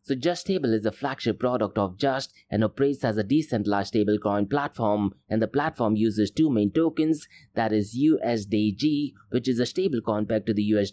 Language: English